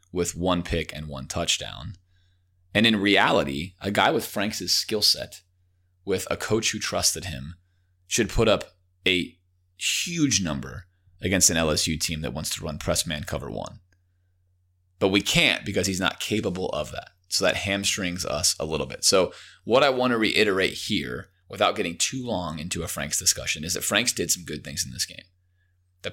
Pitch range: 90-100 Hz